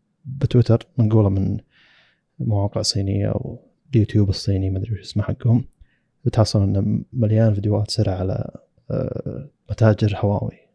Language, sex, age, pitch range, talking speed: Arabic, male, 20-39, 100-125 Hz, 115 wpm